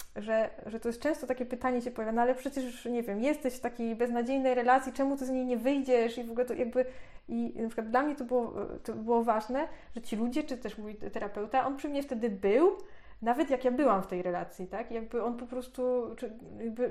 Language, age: Polish, 20-39